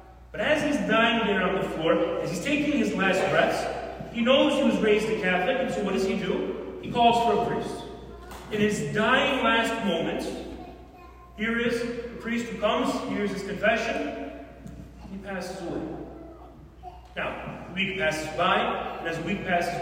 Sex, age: male, 40-59